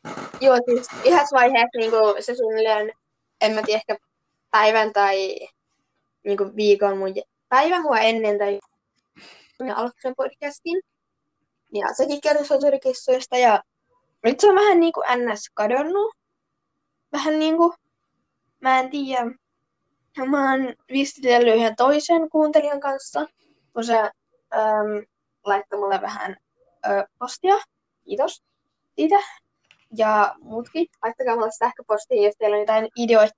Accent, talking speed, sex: native, 125 wpm, female